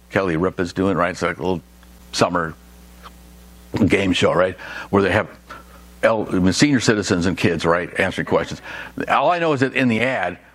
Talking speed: 170 wpm